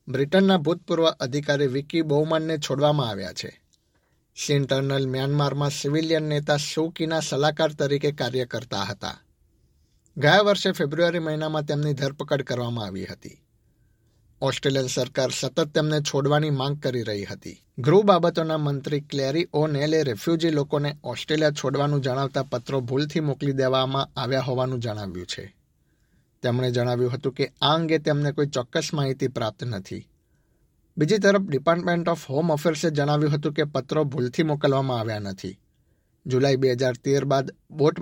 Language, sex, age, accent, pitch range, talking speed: Gujarati, male, 50-69, native, 130-155 Hz, 50 wpm